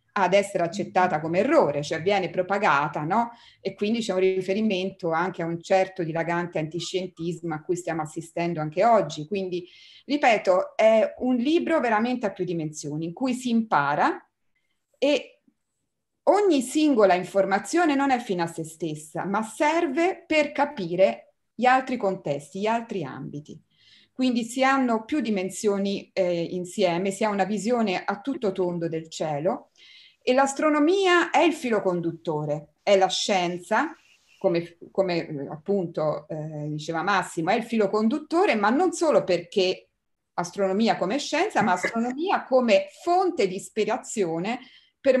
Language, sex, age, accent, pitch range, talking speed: Italian, female, 30-49, native, 170-250 Hz, 145 wpm